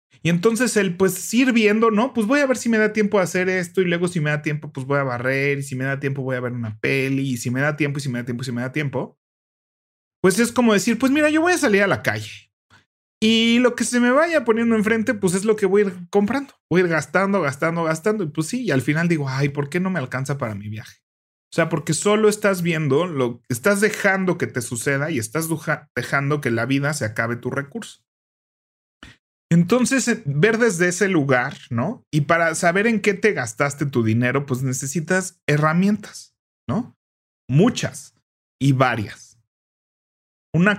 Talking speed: 220 wpm